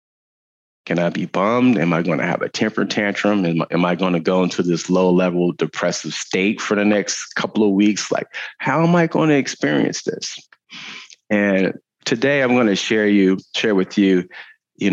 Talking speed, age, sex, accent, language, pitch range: 195 wpm, 30-49, male, American, English, 90-130 Hz